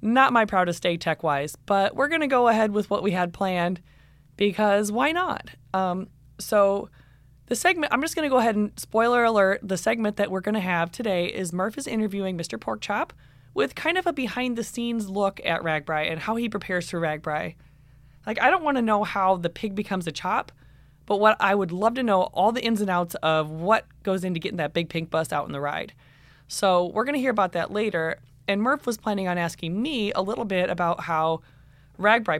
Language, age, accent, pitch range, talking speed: English, 20-39, American, 160-220 Hz, 225 wpm